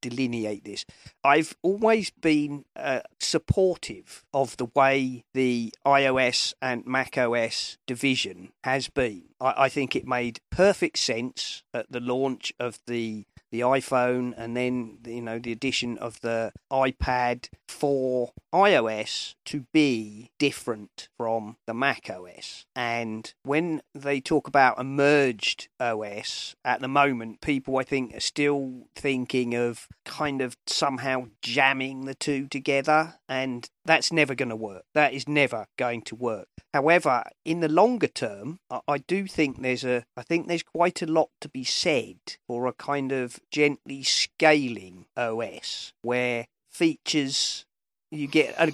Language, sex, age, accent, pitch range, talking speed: English, male, 40-59, British, 120-145 Hz, 145 wpm